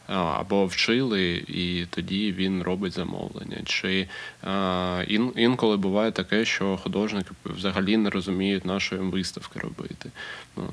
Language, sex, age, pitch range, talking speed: Ukrainian, male, 20-39, 95-105 Hz, 135 wpm